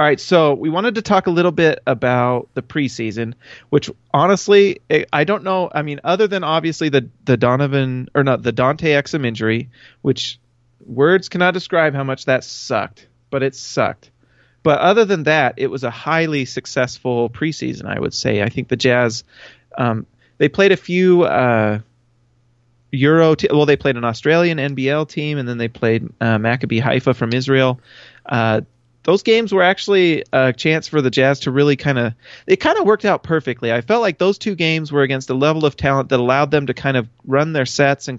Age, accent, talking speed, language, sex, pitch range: 30-49, American, 200 wpm, English, male, 120-160 Hz